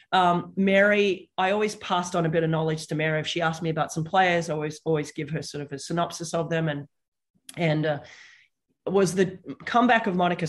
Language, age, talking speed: English, 30-49, 215 wpm